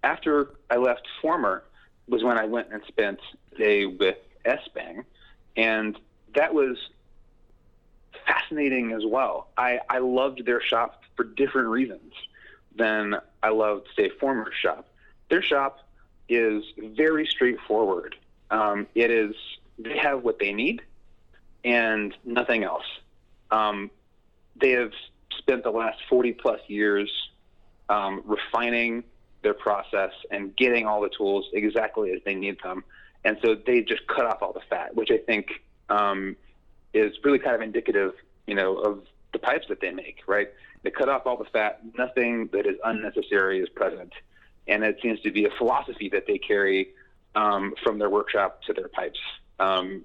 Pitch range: 105-140 Hz